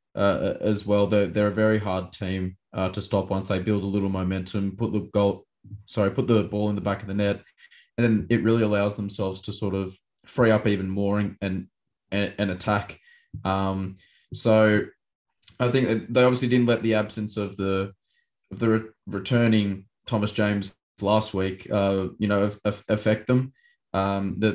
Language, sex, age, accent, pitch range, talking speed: English, male, 20-39, Australian, 100-110 Hz, 180 wpm